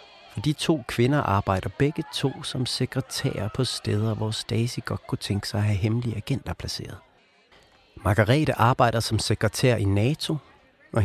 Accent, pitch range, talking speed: native, 105-130 Hz, 160 wpm